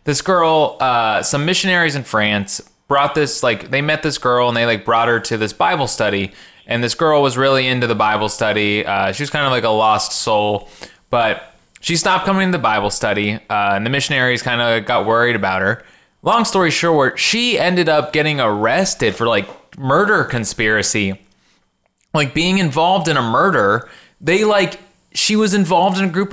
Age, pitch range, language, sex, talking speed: 20-39, 125-195 Hz, English, male, 195 wpm